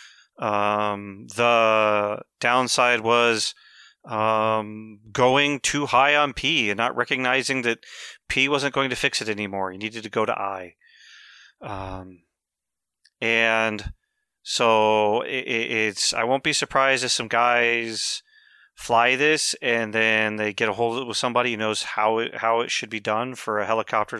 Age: 30-49